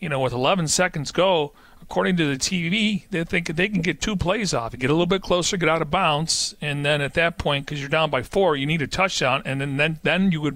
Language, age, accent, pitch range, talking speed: English, 40-59, American, 130-170 Hz, 265 wpm